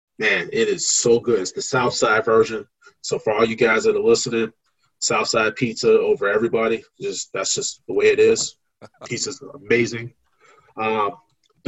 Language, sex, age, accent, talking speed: English, male, 30-49, American, 175 wpm